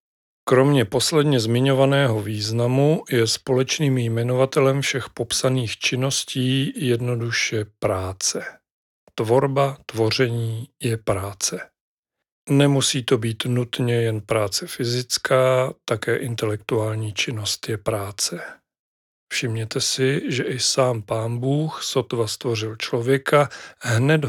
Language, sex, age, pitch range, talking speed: Czech, male, 40-59, 115-135 Hz, 95 wpm